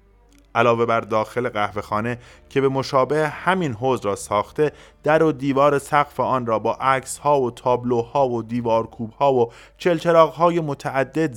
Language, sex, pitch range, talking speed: Persian, male, 110-150 Hz, 160 wpm